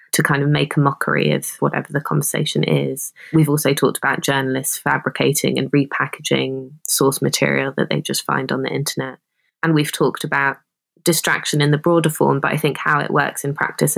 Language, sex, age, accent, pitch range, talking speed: English, female, 20-39, British, 135-155 Hz, 195 wpm